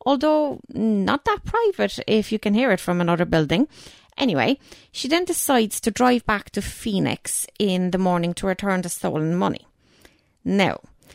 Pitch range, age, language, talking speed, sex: 180-250 Hz, 20-39, English, 160 wpm, female